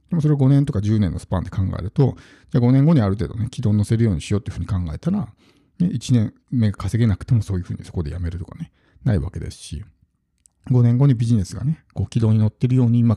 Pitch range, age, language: 100-135 Hz, 50-69, Japanese